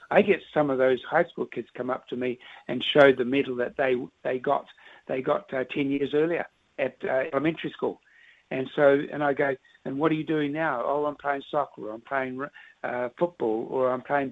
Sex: male